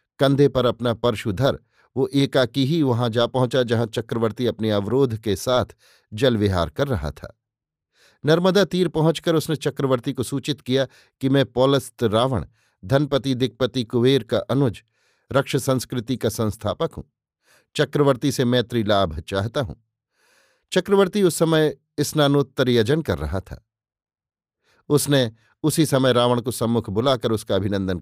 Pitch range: 115-145 Hz